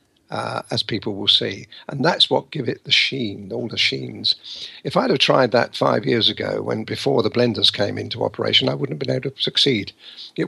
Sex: male